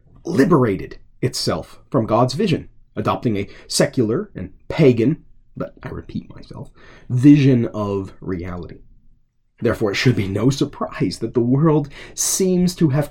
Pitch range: 110-150 Hz